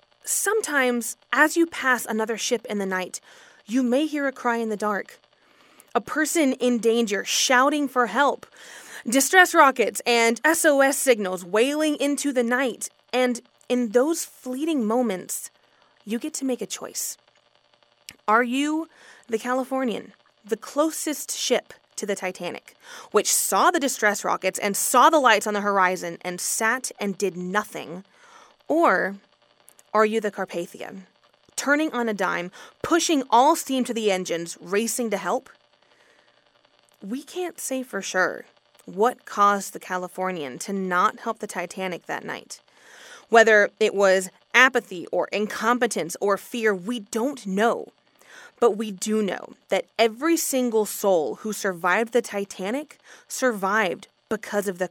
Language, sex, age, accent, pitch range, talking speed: English, female, 20-39, American, 195-265 Hz, 145 wpm